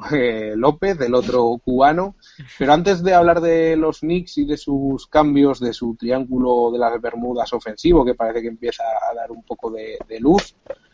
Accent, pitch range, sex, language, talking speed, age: Spanish, 120-160 Hz, male, Spanish, 180 wpm, 30-49